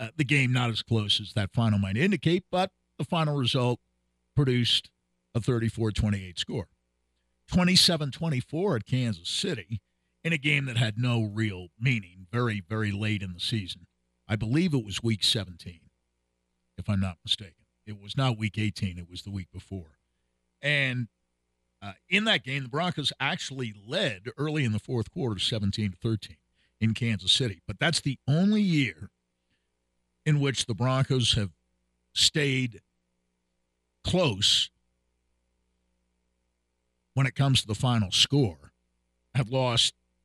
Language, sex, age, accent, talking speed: English, male, 50-69, American, 145 wpm